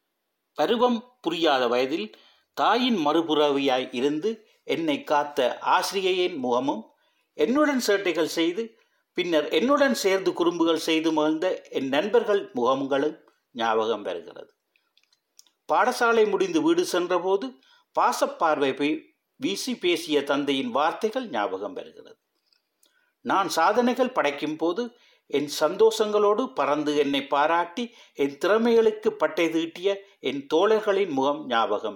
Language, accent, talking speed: Tamil, native, 100 wpm